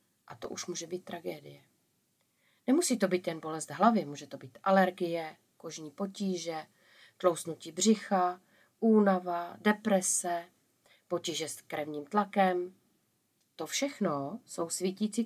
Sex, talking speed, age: female, 120 wpm, 40-59